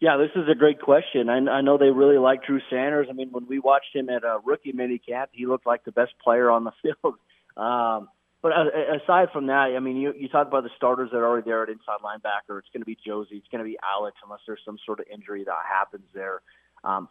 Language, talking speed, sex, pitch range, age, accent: English, 255 wpm, male, 115-135 Hz, 30-49, American